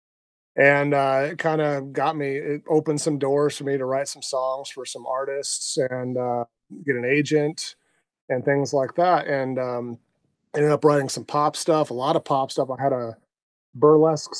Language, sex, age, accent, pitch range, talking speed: English, male, 30-49, American, 130-150 Hz, 190 wpm